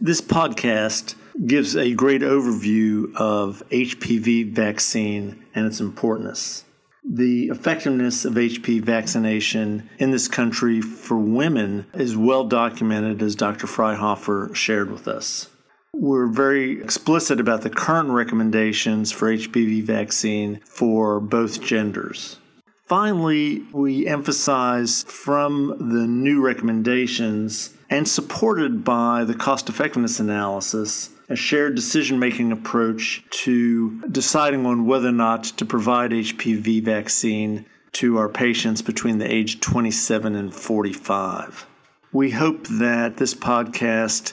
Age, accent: 50-69, American